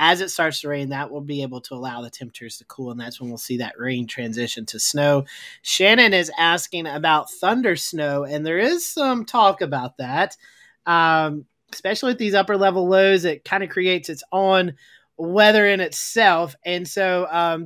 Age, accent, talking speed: 30-49, American, 190 wpm